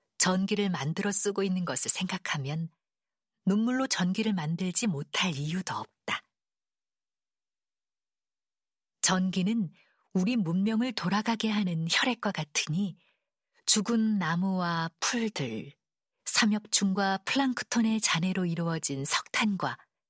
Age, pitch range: 40-59, 155-210 Hz